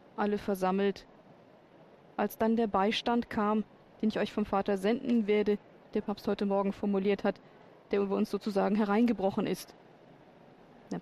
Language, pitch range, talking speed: German, 195-225 Hz, 145 wpm